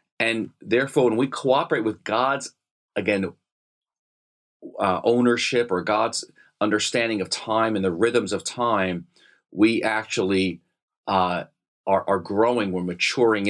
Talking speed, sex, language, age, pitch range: 125 wpm, male, English, 40-59, 90-115 Hz